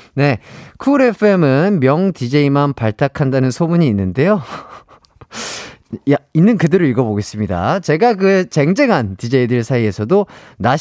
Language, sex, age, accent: Korean, male, 30-49, native